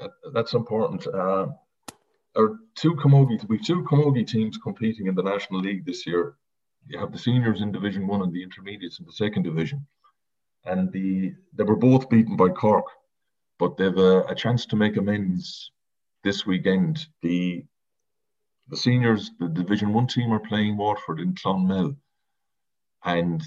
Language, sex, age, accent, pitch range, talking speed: English, male, 40-59, Irish, 95-125 Hz, 155 wpm